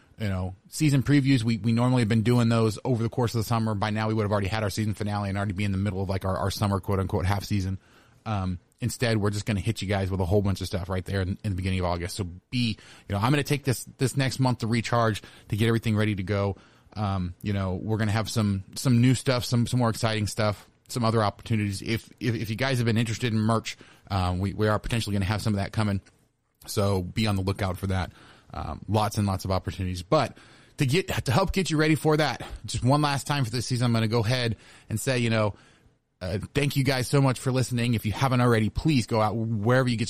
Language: English